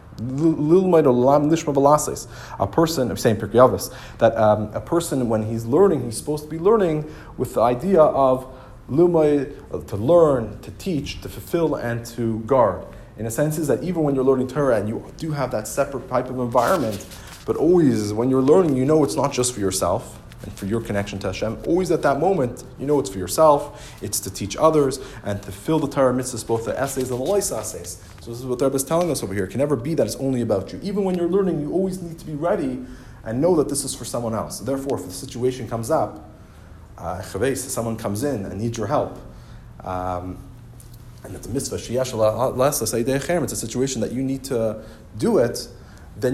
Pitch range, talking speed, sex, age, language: 110-135 Hz, 210 wpm, male, 30-49, English